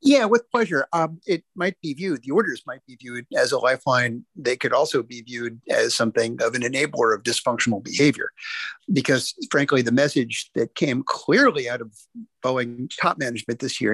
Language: English